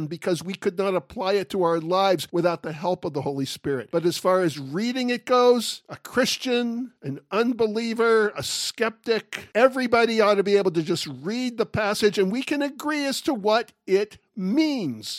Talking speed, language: 190 wpm, English